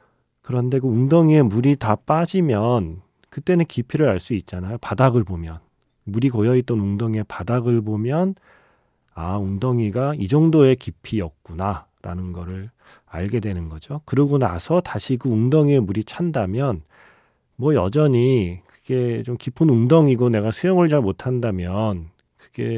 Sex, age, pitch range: male, 40-59, 95-135 Hz